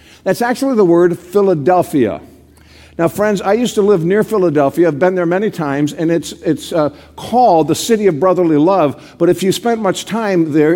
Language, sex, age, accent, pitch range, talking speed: English, male, 50-69, American, 155-200 Hz, 195 wpm